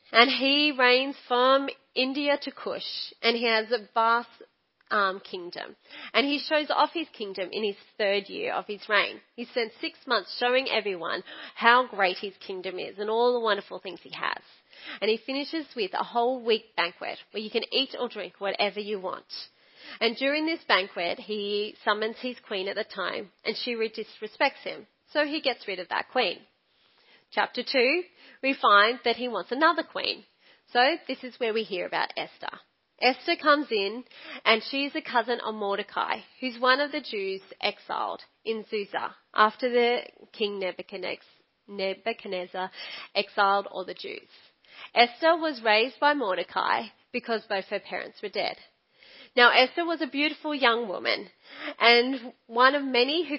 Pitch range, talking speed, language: 210-270 Hz, 170 wpm, English